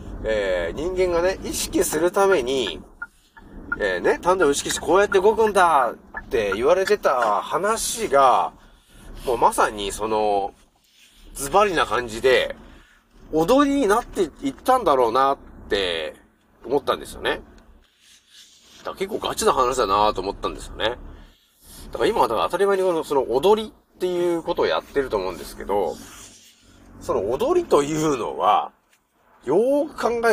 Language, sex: Japanese, male